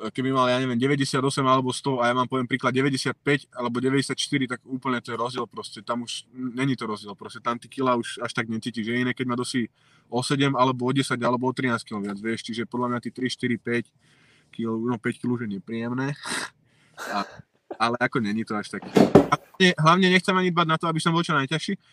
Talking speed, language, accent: 225 wpm, Czech, native